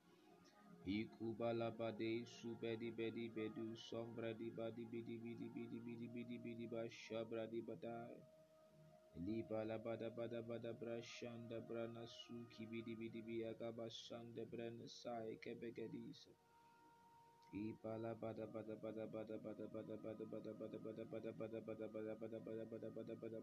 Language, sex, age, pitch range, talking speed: English, male, 20-39, 95-115 Hz, 55 wpm